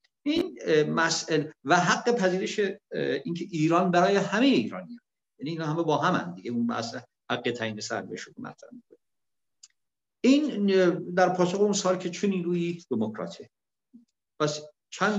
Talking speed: 130 wpm